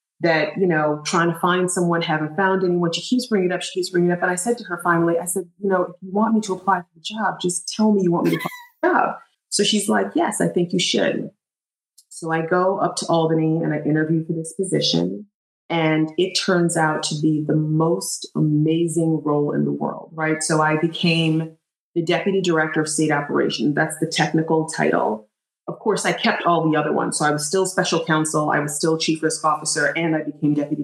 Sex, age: female, 30-49